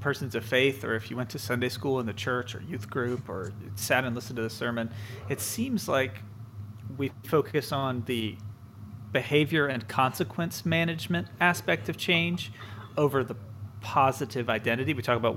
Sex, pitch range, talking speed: male, 110-135 Hz, 170 wpm